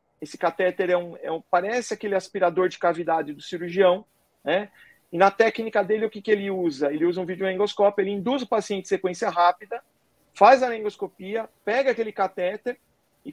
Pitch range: 180-215 Hz